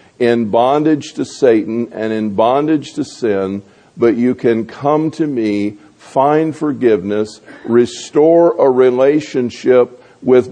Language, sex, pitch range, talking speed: English, male, 105-130 Hz, 120 wpm